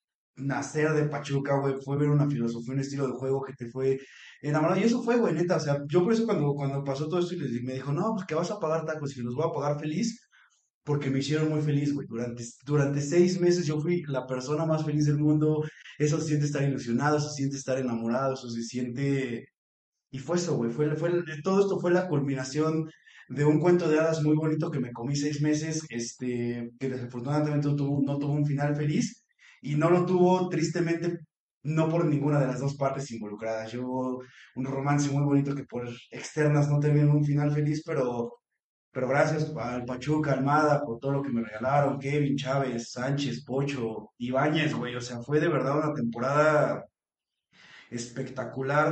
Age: 20-39